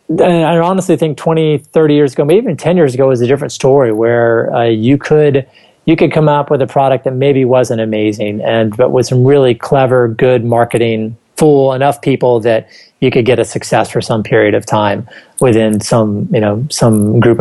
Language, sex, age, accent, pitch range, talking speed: English, male, 30-49, American, 110-135 Hz, 200 wpm